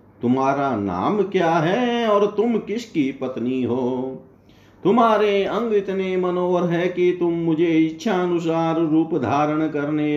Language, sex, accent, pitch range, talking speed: Hindi, male, native, 140-190 Hz, 130 wpm